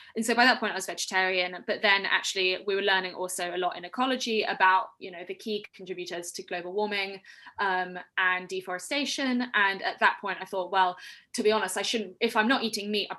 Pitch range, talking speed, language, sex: 185-230 Hz, 225 wpm, English, female